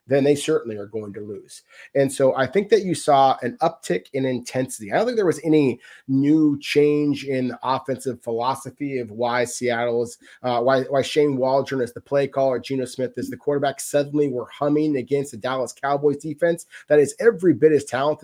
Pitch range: 130-155 Hz